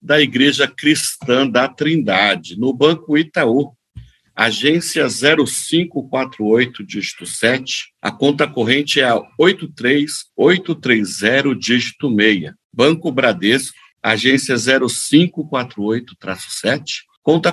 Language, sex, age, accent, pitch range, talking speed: Portuguese, male, 50-69, Brazilian, 115-150 Hz, 90 wpm